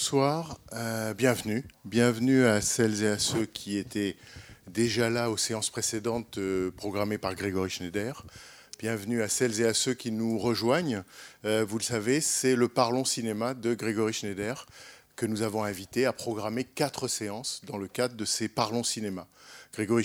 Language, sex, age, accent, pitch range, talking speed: French, male, 50-69, French, 100-120 Hz, 170 wpm